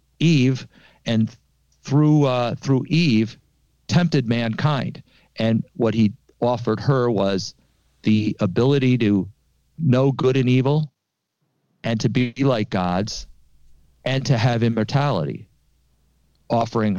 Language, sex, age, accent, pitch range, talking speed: English, male, 50-69, American, 100-135 Hz, 110 wpm